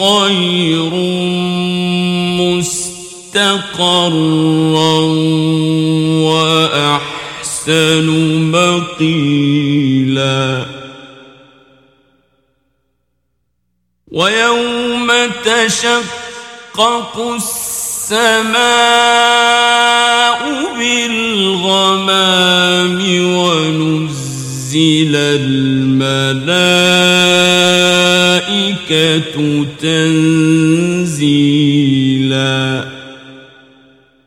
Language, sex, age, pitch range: Persian, male, 50-69, 150-215 Hz